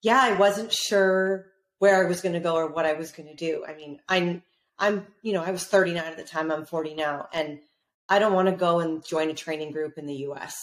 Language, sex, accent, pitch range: English, female, American, 160-190 Hz